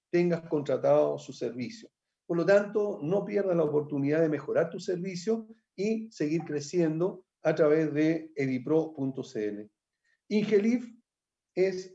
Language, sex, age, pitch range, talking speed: Spanish, male, 50-69, 140-180 Hz, 120 wpm